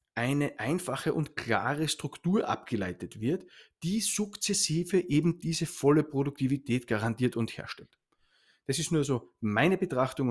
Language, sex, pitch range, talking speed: German, male, 130-170 Hz, 130 wpm